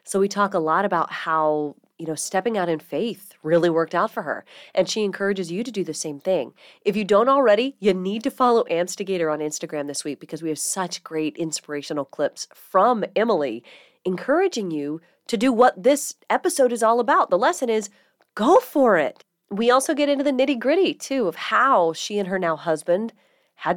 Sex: female